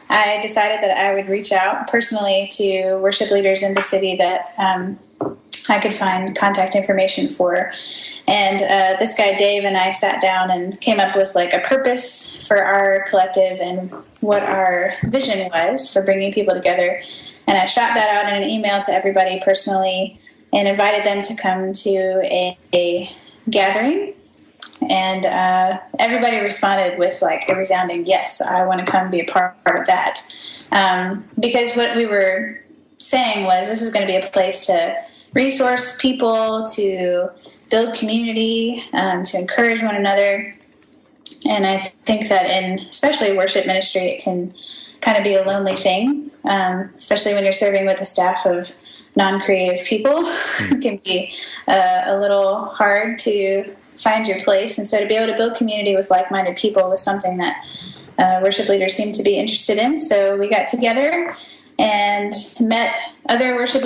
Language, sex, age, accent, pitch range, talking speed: English, female, 10-29, American, 190-225 Hz, 170 wpm